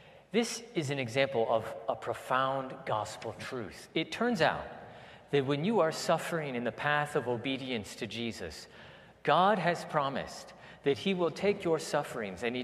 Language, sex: English, male